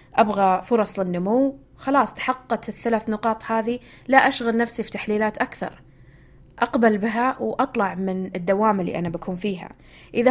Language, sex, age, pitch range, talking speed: Arabic, female, 20-39, 180-235 Hz, 140 wpm